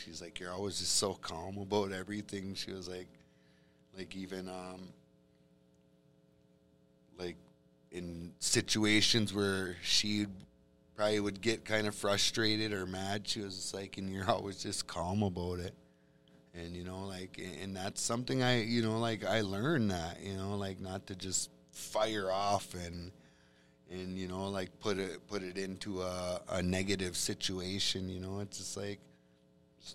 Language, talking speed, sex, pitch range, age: English, 165 wpm, male, 80-100 Hz, 30-49